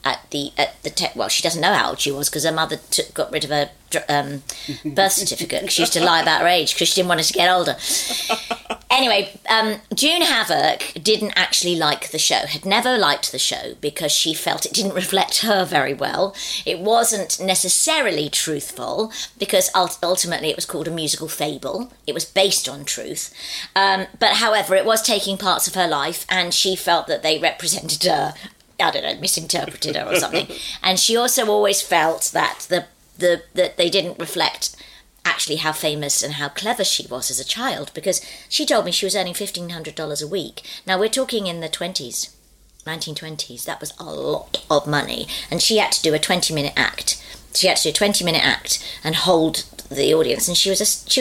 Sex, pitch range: female, 155-200 Hz